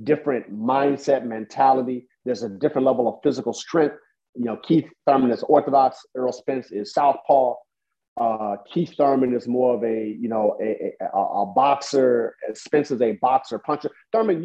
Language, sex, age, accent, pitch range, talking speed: English, male, 40-59, American, 115-145 Hz, 160 wpm